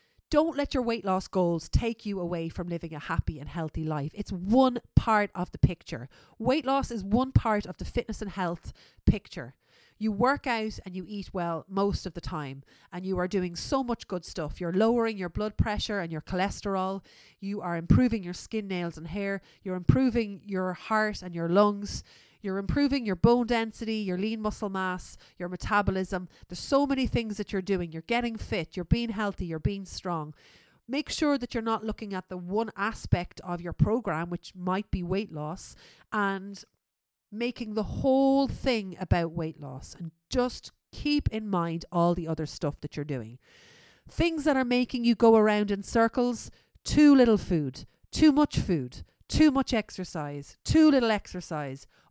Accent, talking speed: Irish, 185 wpm